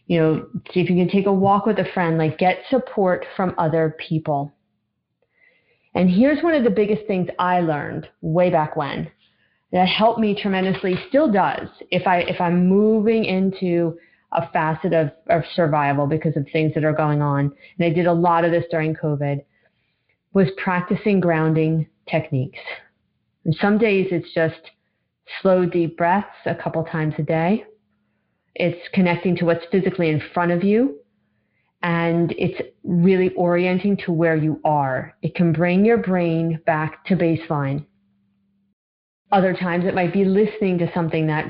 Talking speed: 165 wpm